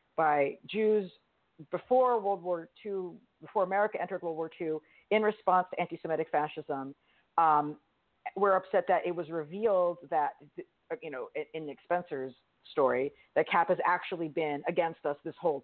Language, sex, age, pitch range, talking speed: English, female, 50-69, 155-200 Hz, 155 wpm